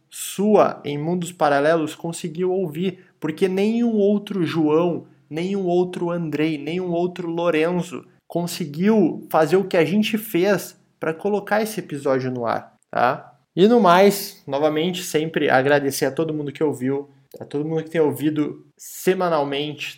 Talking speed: 145 wpm